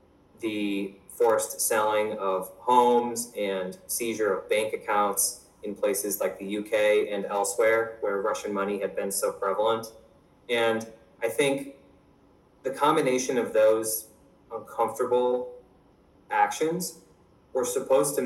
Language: English